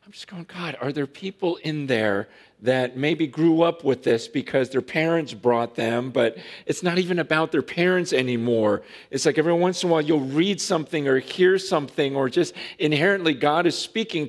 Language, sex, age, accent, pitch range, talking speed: English, male, 40-59, American, 120-165 Hz, 195 wpm